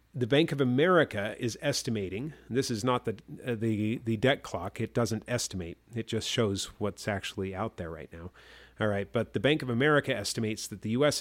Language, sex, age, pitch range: English, male, 40-59, 95-130 Hz